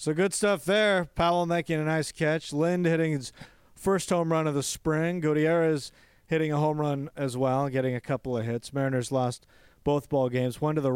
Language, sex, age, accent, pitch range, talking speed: English, male, 40-59, American, 125-160 Hz, 210 wpm